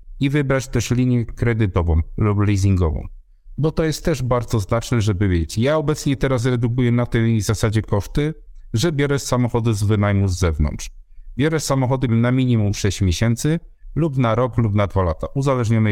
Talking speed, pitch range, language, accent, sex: 165 wpm, 100-120 Hz, Polish, native, male